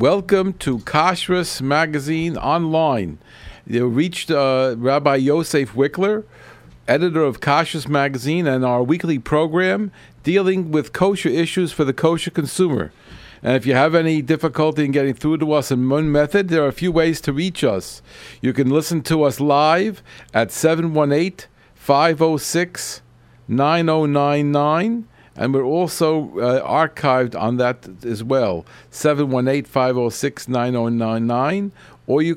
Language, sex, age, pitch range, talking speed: English, male, 50-69, 130-170 Hz, 130 wpm